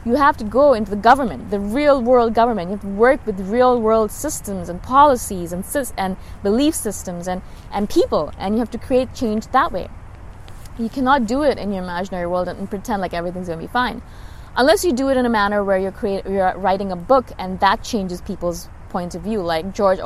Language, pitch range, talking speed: English, 190-250 Hz, 225 wpm